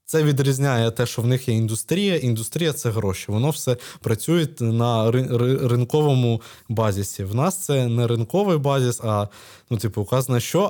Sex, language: male, Ukrainian